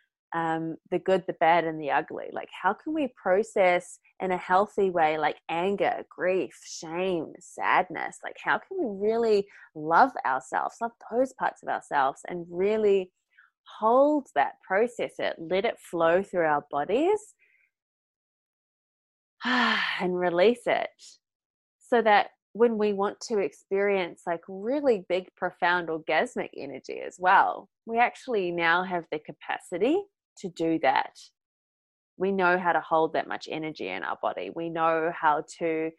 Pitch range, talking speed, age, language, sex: 165-210 Hz, 145 wpm, 20-39, English, female